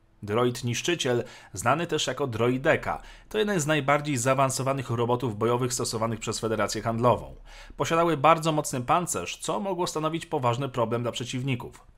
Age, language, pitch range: 40-59, Polish, 115-145 Hz